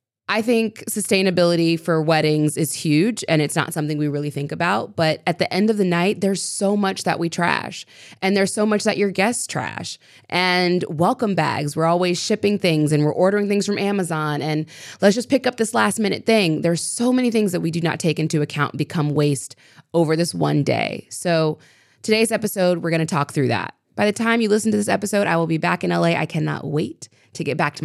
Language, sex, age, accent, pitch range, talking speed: English, female, 20-39, American, 150-195 Hz, 225 wpm